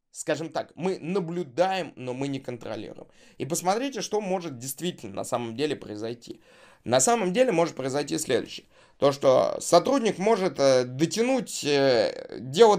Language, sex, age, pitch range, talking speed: Russian, male, 20-39, 135-200 Hz, 135 wpm